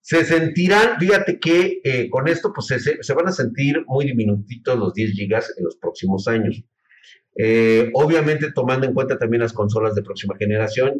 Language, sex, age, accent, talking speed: Spanish, male, 40-59, Mexican, 180 wpm